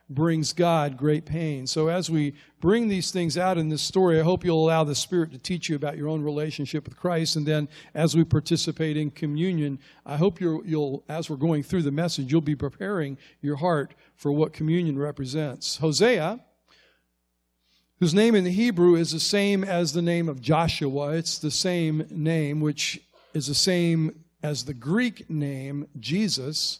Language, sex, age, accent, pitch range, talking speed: English, male, 50-69, American, 150-180 Hz, 180 wpm